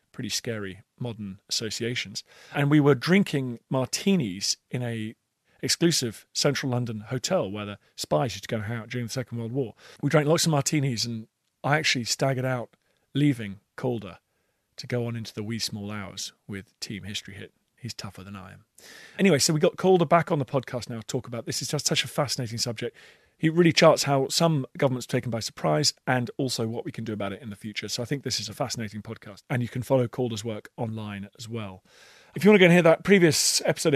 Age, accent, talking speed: 40-59, British, 225 wpm